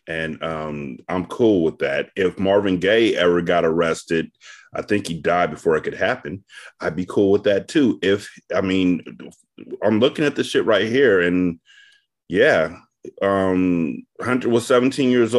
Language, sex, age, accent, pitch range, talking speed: English, male, 30-49, American, 95-135 Hz, 170 wpm